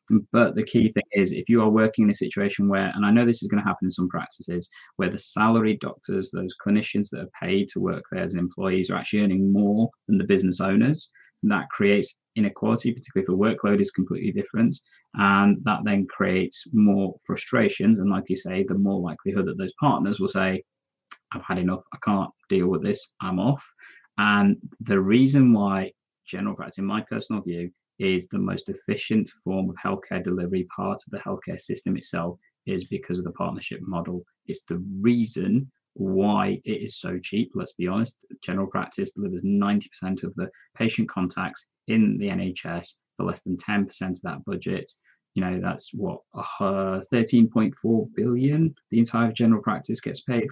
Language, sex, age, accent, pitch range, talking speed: English, male, 20-39, British, 95-120 Hz, 190 wpm